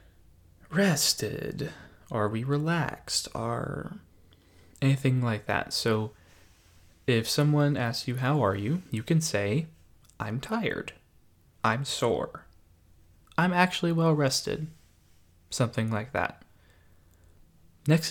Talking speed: 105 wpm